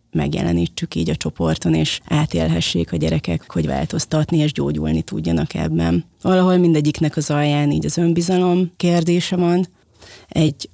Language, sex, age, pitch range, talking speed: Hungarian, female, 30-49, 110-165 Hz, 135 wpm